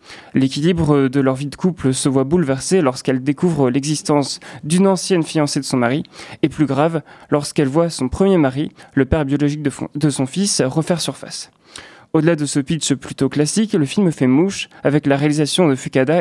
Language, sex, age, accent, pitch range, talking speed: French, male, 20-39, French, 140-170 Hz, 185 wpm